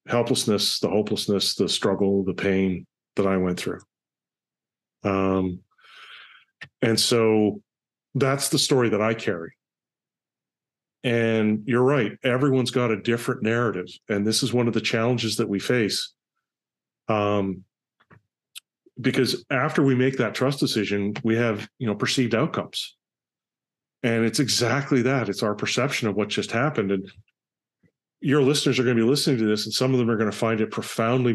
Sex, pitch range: male, 105-130 Hz